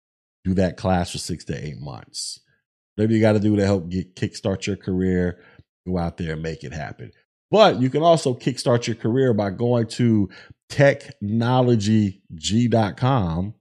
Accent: American